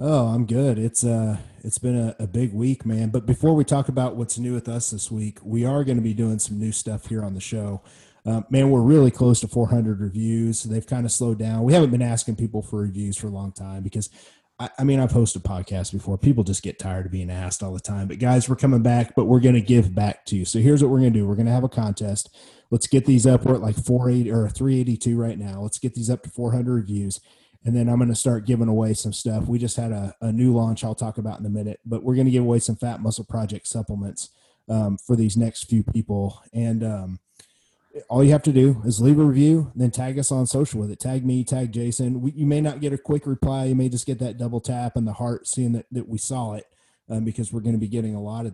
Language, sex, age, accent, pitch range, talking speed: English, male, 30-49, American, 110-125 Hz, 275 wpm